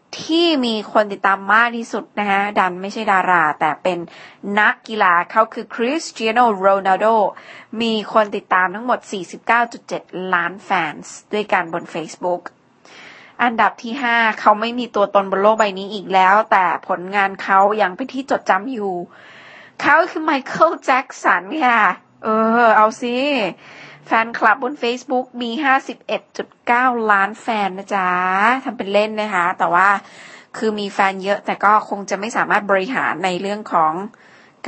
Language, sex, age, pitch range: Thai, female, 20-39, 190-235 Hz